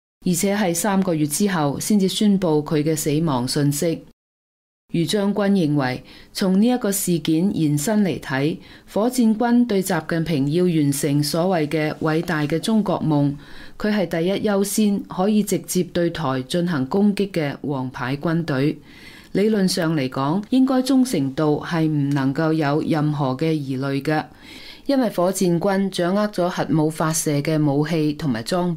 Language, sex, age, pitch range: Chinese, female, 20-39, 150-200 Hz